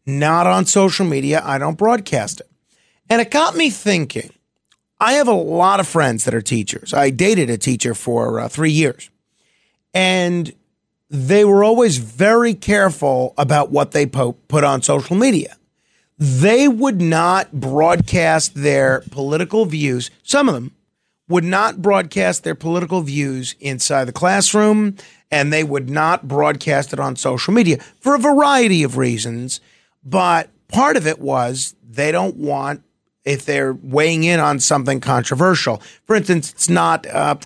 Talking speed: 155 wpm